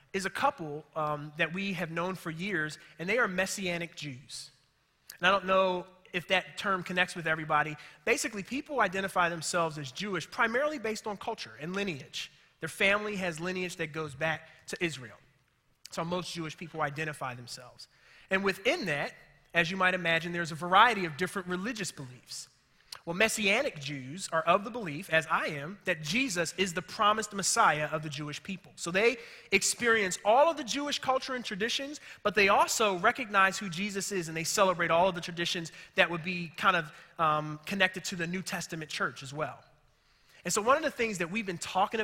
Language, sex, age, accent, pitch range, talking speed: English, male, 30-49, American, 160-200 Hz, 190 wpm